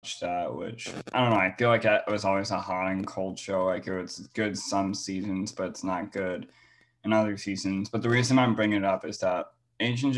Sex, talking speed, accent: male, 225 wpm, American